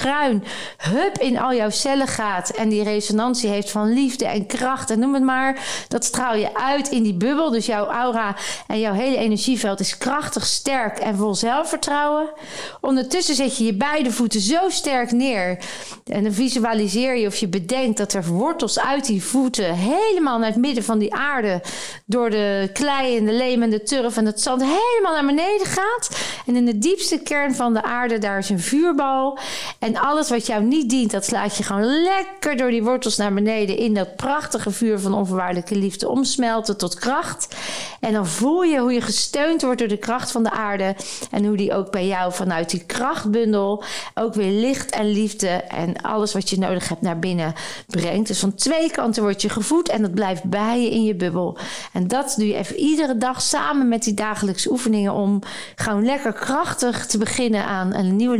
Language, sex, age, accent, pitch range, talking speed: Dutch, female, 40-59, Dutch, 205-260 Hz, 200 wpm